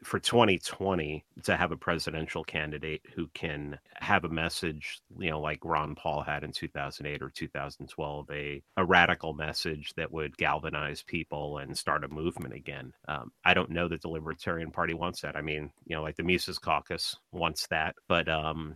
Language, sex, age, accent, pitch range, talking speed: English, male, 30-49, American, 75-90 Hz, 180 wpm